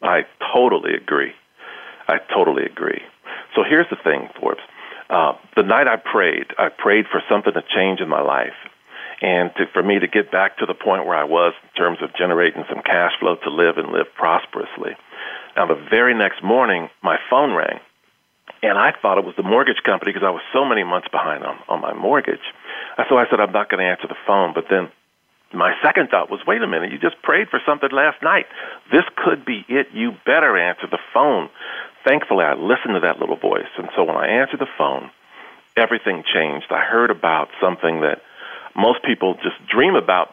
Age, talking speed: 50-69, 205 wpm